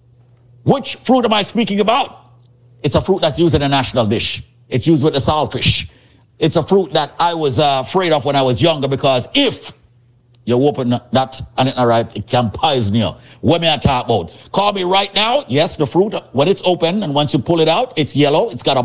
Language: English